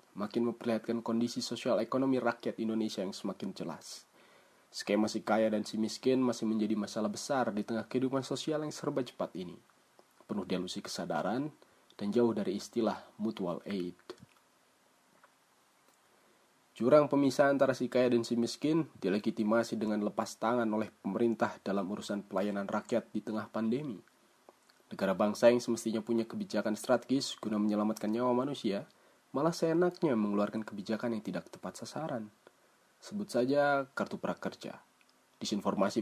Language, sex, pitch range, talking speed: Indonesian, male, 110-130 Hz, 135 wpm